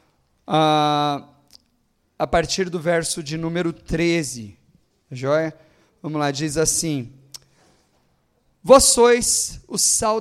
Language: Portuguese